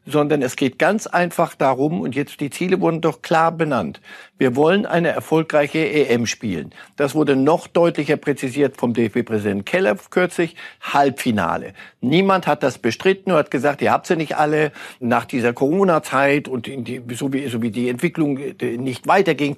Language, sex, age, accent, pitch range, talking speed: German, male, 60-79, German, 120-160 Hz, 175 wpm